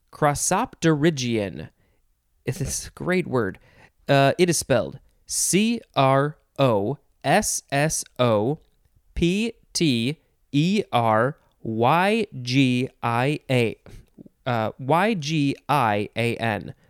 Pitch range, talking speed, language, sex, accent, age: 125-170 Hz, 40 wpm, English, male, American, 30-49